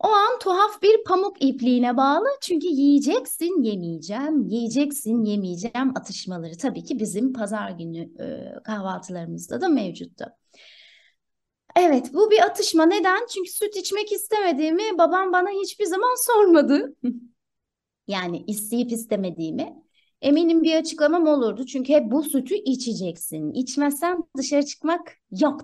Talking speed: 120 wpm